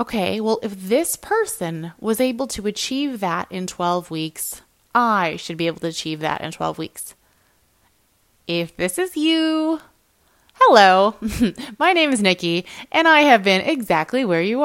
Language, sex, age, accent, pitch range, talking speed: English, female, 20-39, American, 175-225 Hz, 160 wpm